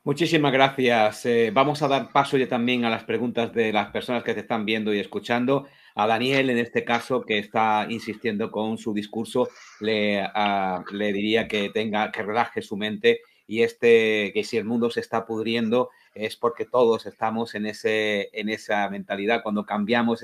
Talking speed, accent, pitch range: 185 wpm, Spanish, 105-125 Hz